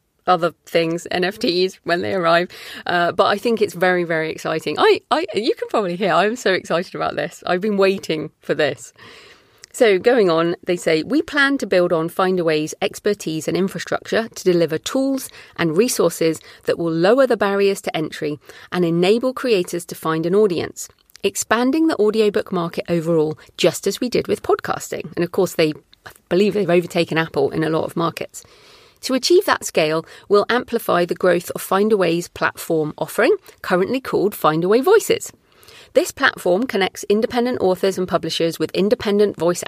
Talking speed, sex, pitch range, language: 170 wpm, female, 170-250 Hz, English